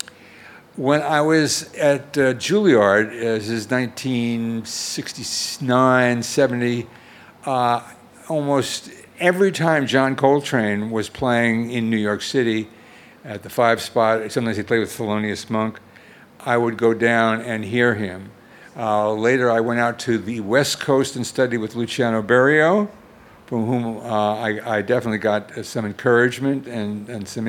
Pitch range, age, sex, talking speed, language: 115-145 Hz, 60-79, male, 145 wpm, Finnish